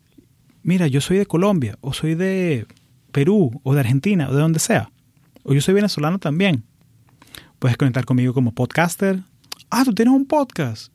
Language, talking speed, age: Spanish, 170 wpm, 30-49